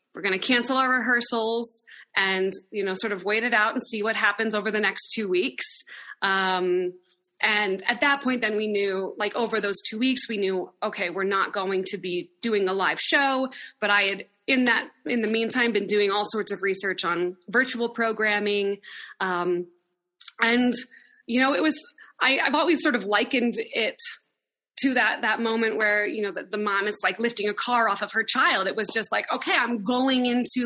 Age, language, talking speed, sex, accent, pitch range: 20-39, English, 205 wpm, female, American, 205-255 Hz